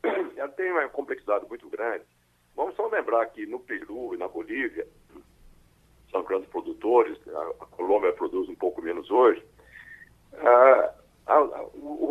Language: Portuguese